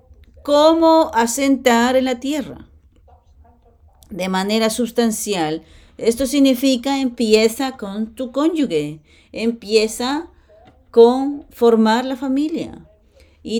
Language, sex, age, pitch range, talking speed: English, female, 40-59, 195-255 Hz, 90 wpm